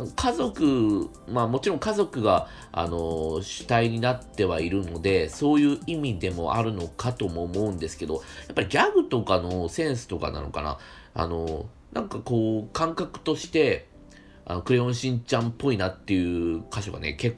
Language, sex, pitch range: Japanese, male, 85-135 Hz